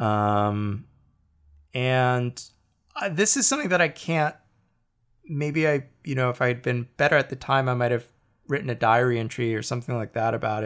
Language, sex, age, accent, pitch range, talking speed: English, male, 20-39, American, 110-155 Hz, 175 wpm